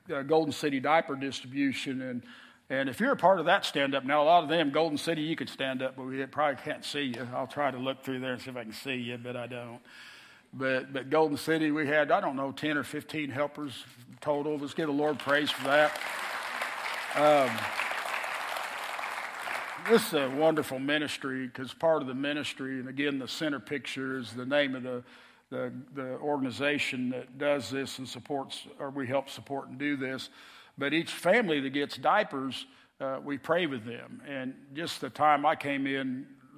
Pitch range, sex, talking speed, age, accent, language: 130-150 Hz, male, 200 wpm, 50-69, American, English